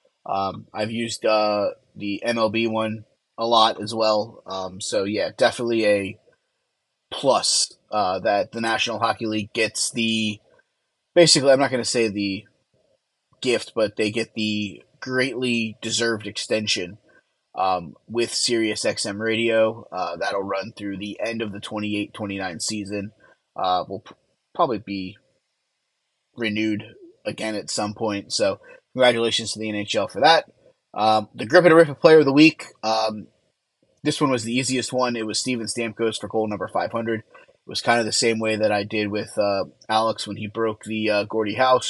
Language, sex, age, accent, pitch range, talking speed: English, male, 20-39, American, 105-120 Hz, 170 wpm